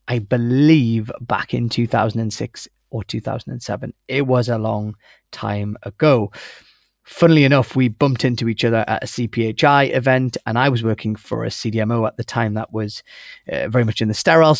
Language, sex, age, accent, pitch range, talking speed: English, male, 30-49, British, 110-125 Hz, 175 wpm